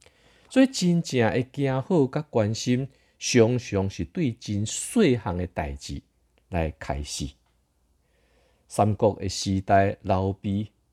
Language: Chinese